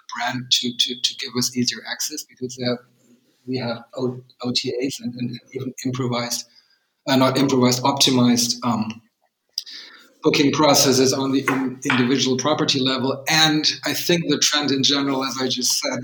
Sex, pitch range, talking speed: male, 125-155 Hz, 155 wpm